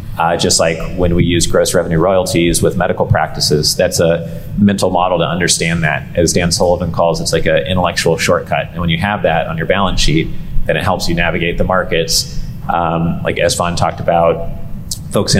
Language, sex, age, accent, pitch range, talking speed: English, male, 30-49, American, 85-100 Hz, 195 wpm